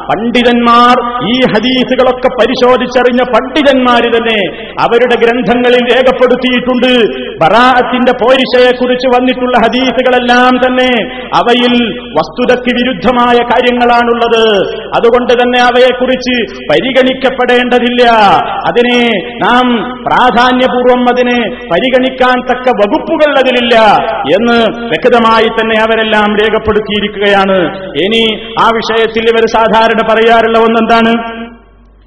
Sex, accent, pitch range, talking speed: male, native, 230-255 Hz, 75 wpm